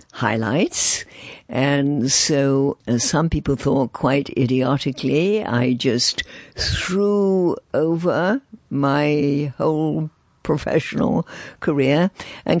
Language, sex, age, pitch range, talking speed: English, female, 60-79, 120-145 Hz, 85 wpm